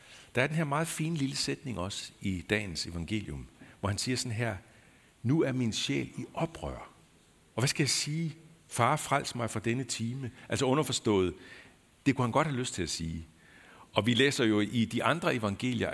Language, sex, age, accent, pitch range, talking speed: Danish, male, 60-79, native, 95-125 Hz, 200 wpm